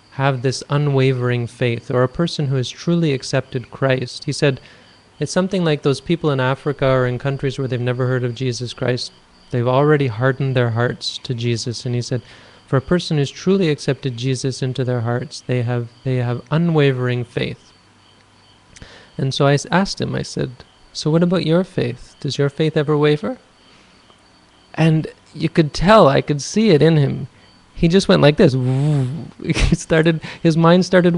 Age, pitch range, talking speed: 30-49, 125-155 Hz, 180 wpm